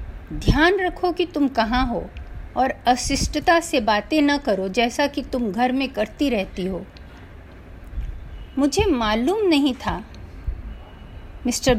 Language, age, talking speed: Hindi, 50-69, 125 wpm